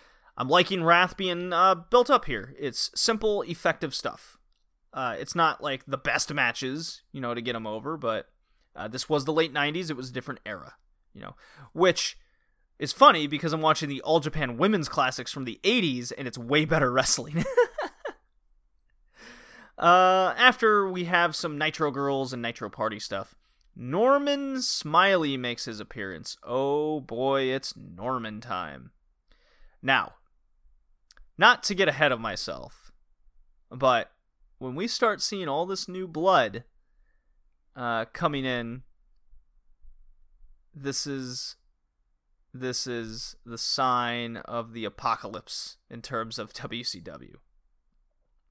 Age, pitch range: 30-49, 120-180 Hz